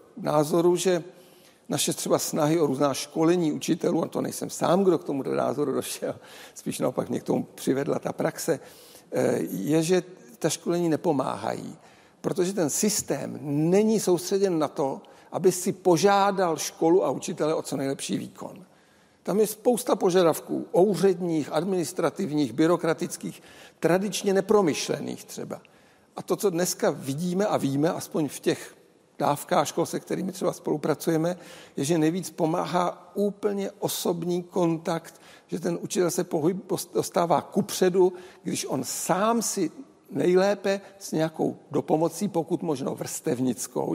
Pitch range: 160-185 Hz